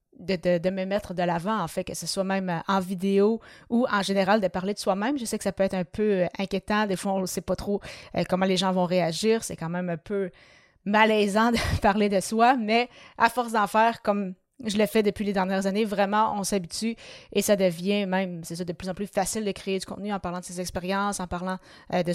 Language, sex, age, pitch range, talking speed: French, female, 30-49, 180-210 Hz, 250 wpm